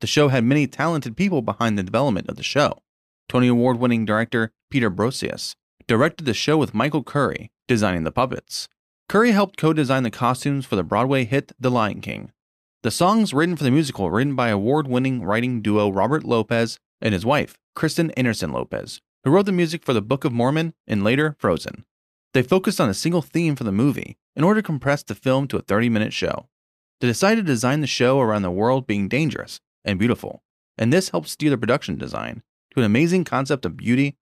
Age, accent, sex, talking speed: 30-49, American, male, 200 wpm